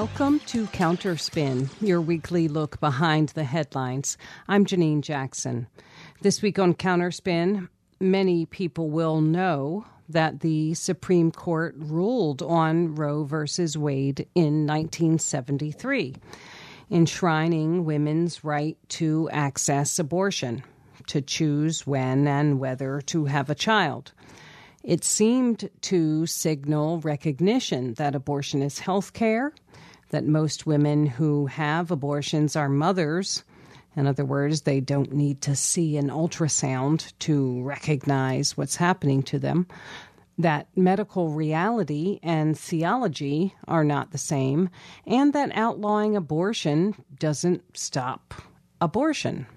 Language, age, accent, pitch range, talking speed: English, 50-69, American, 140-175 Hz, 115 wpm